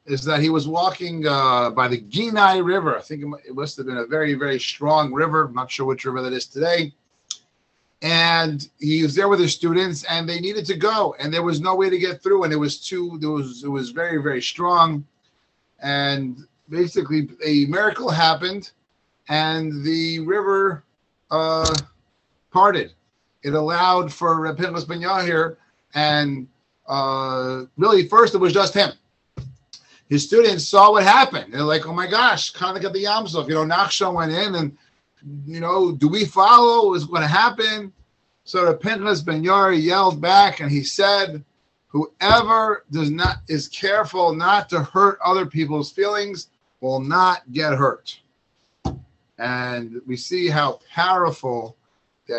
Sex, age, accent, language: male, 30-49, American, English